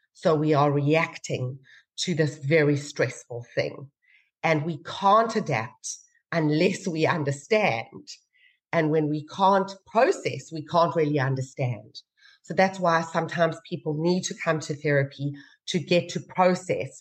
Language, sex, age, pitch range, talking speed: English, female, 40-59, 145-175 Hz, 140 wpm